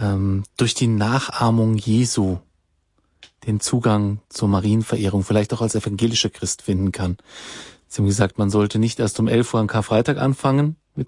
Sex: male